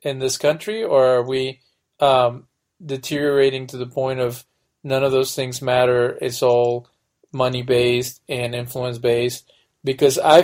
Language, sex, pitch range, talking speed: English, male, 120-135 Hz, 150 wpm